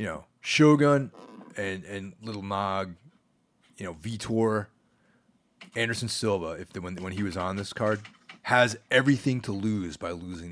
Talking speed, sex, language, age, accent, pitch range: 155 wpm, male, English, 30-49, American, 90-125 Hz